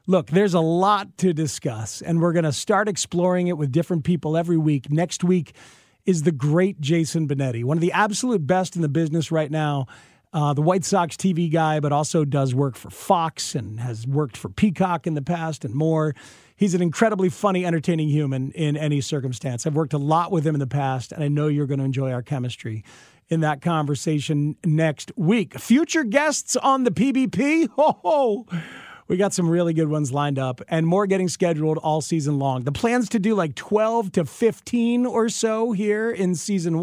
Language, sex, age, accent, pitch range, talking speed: English, male, 40-59, American, 145-195 Hz, 200 wpm